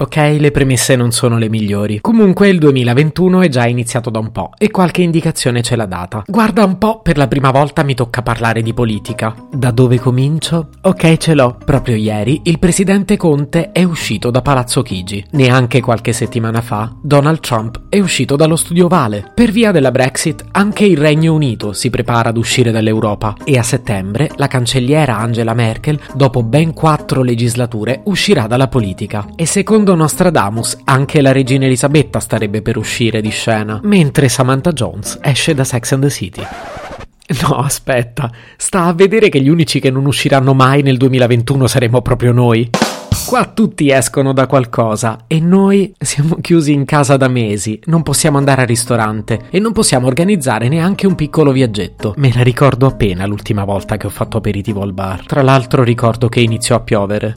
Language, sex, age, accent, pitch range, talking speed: Italian, male, 30-49, native, 115-155 Hz, 180 wpm